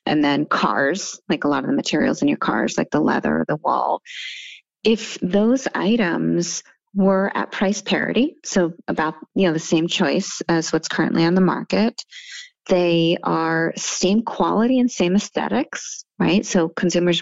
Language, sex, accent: English, female, American